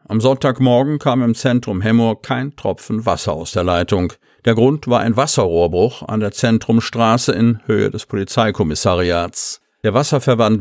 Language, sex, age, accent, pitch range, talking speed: German, male, 50-69, German, 100-125 Hz, 145 wpm